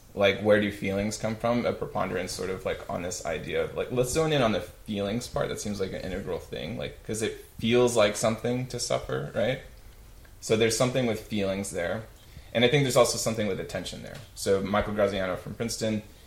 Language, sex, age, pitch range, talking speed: English, male, 20-39, 100-115 Hz, 215 wpm